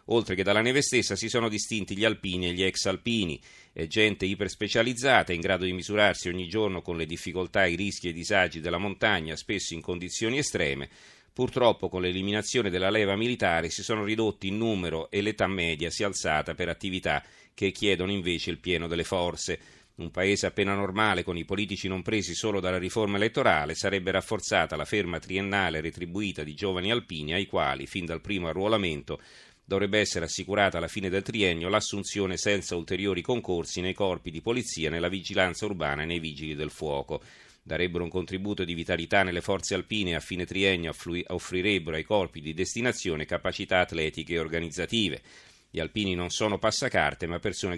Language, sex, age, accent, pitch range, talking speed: Italian, male, 40-59, native, 85-100 Hz, 180 wpm